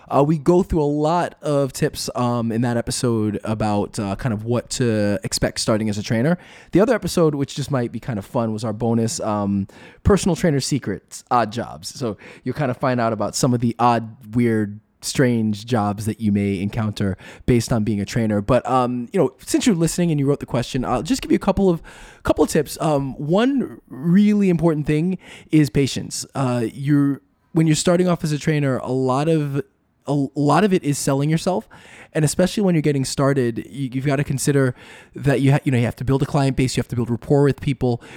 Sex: male